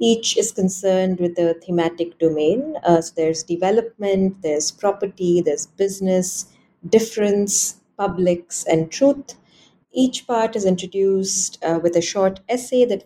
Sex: female